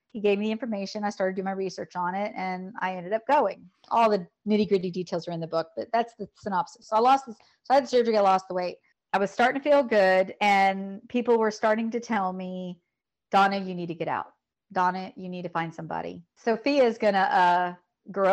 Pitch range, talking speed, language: 175-205 Hz, 240 wpm, English